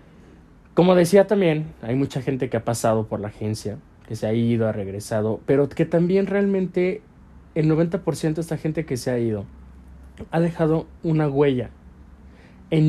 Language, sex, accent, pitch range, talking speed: Spanish, male, Mexican, 110-160 Hz, 170 wpm